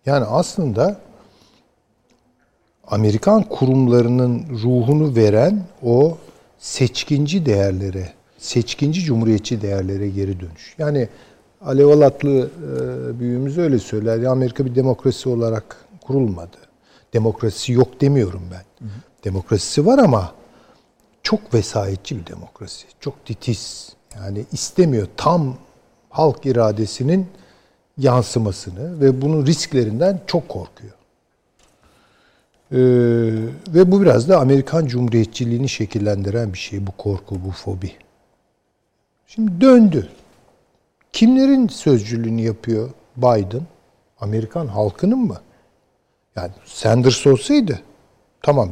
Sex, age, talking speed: male, 60-79, 95 wpm